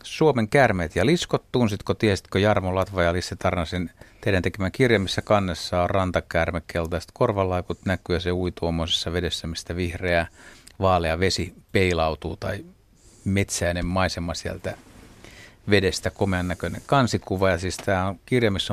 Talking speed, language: 135 wpm, Finnish